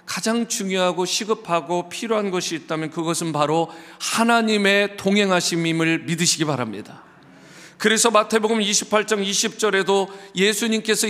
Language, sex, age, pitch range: Korean, male, 40-59, 165-220 Hz